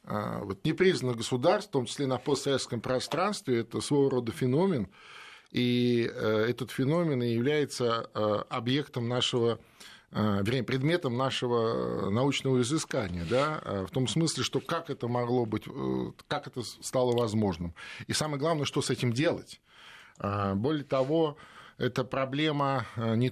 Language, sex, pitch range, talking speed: Russian, male, 110-135 Hz, 125 wpm